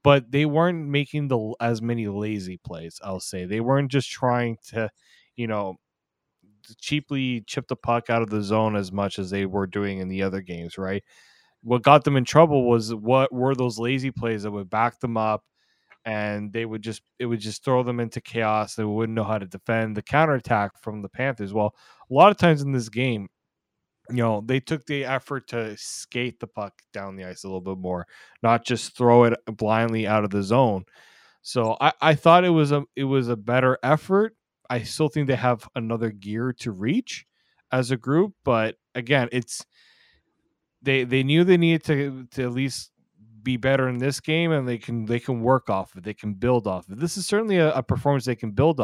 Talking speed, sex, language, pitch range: 215 wpm, male, English, 105-135 Hz